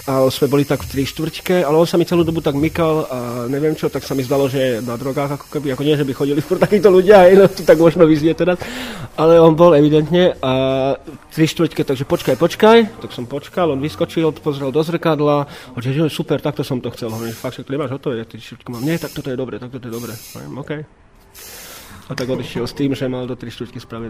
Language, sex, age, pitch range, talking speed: Slovak, male, 20-39, 125-155 Hz, 230 wpm